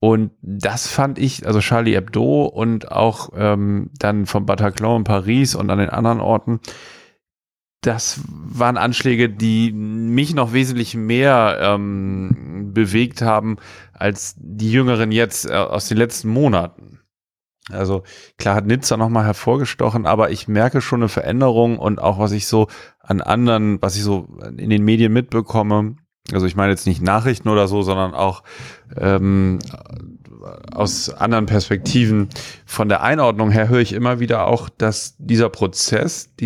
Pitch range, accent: 100-120 Hz, German